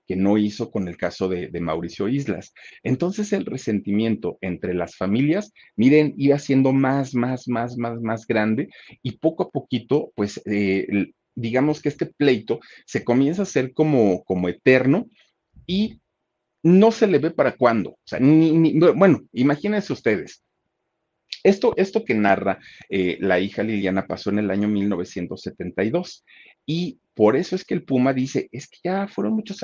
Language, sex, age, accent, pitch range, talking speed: Spanish, male, 40-59, Mexican, 100-160 Hz, 165 wpm